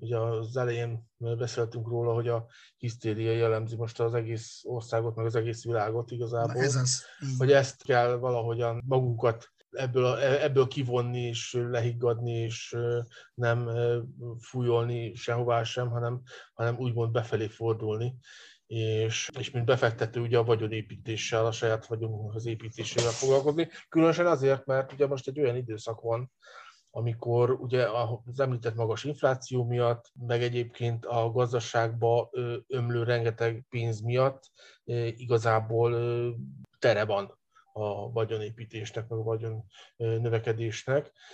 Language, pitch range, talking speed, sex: Hungarian, 115-125 Hz, 125 wpm, male